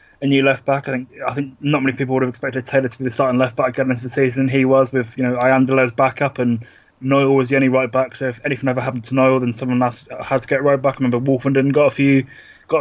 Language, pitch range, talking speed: English, 125-135 Hz, 285 wpm